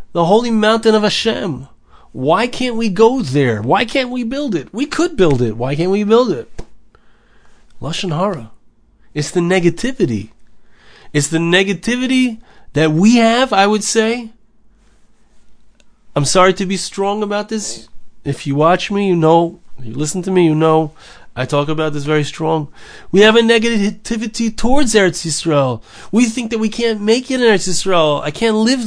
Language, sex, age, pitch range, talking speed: English, male, 30-49, 160-225 Hz, 175 wpm